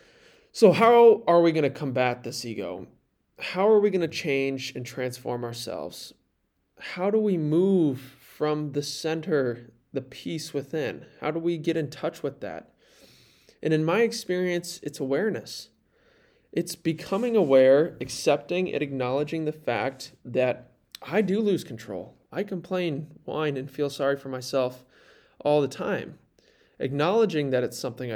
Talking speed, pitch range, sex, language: 150 wpm, 135-175 Hz, male, English